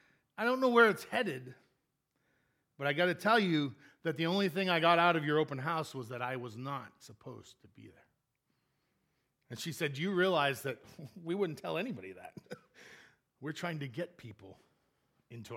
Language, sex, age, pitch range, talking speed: English, male, 40-59, 135-200 Hz, 190 wpm